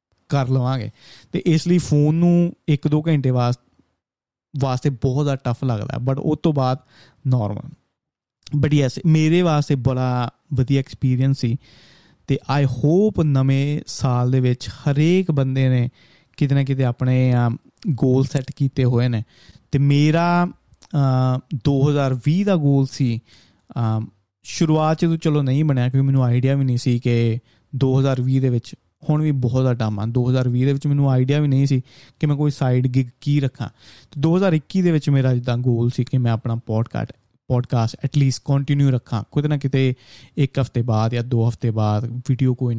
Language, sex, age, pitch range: Punjabi, male, 20-39, 125-150 Hz